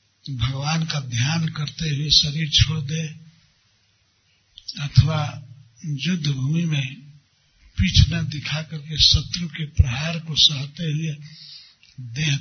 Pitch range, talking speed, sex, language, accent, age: 110-155 Hz, 110 wpm, male, Hindi, native, 60-79